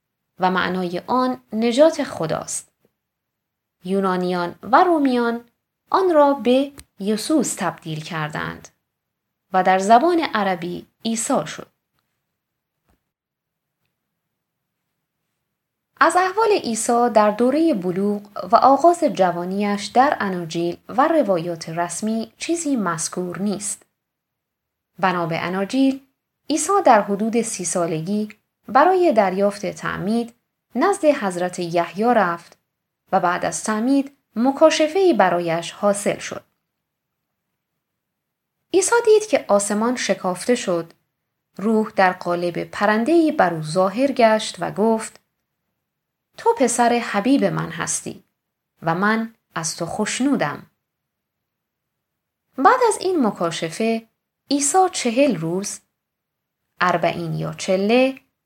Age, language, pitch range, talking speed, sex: 20-39, Persian, 180-270 Hz, 95 wpm, female